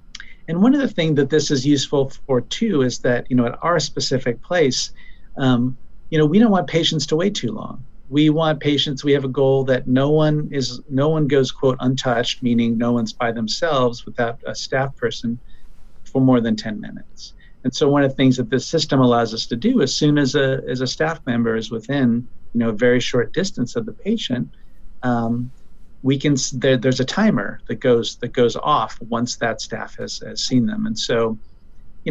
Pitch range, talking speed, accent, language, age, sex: 115-145 Hz, 215 wpm, American, English, 50-69, male